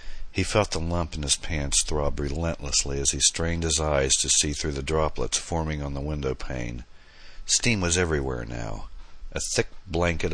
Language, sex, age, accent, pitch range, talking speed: English, male, 60-79, American, 70-85 Hz, 175 wpm